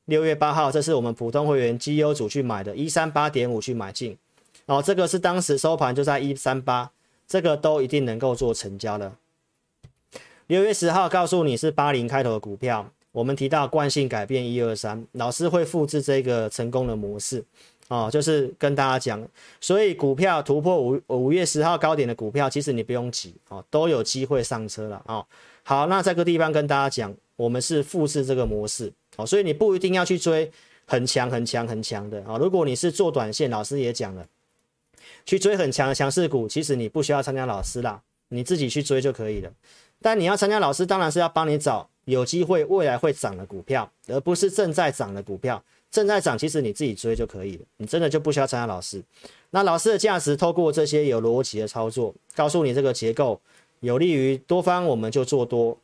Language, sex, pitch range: Chinese, male, 120-160 Hz